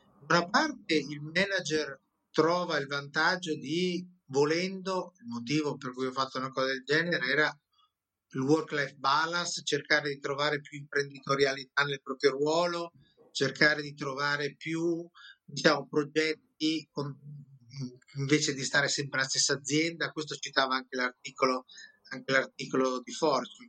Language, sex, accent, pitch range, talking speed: Italian, male, native, 140-170 Hz, 135 wpm